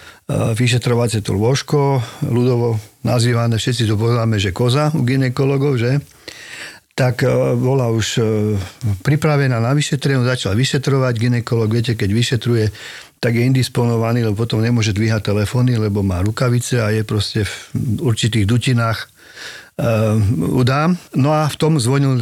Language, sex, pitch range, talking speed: Slovak, male, 115-140 Hz, 135 wpm